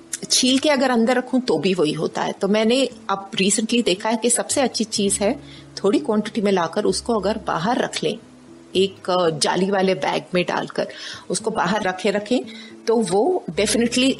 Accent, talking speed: native, 170 wpm